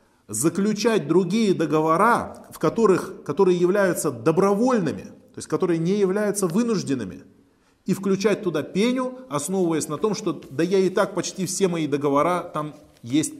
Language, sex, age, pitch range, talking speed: Russian, male, 20-39, 145-190 Hz, 135 wpm